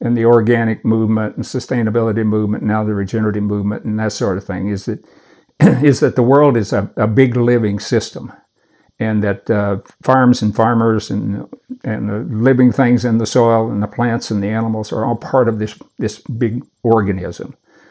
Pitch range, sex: 105-125 Hz, male